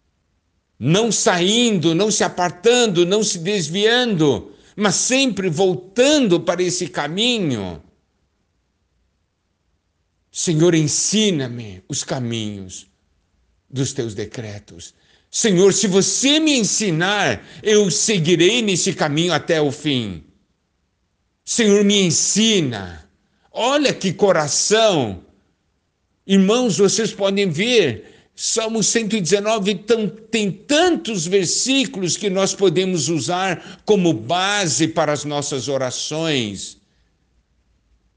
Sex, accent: male, Brazilian